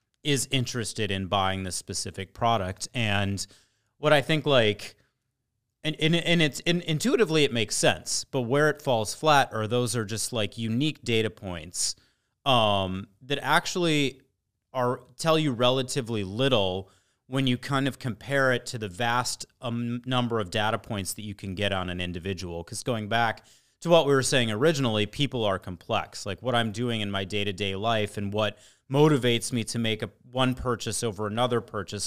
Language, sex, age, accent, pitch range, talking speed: English, male, 30-49, American, 100-130 Hz, 175 wpm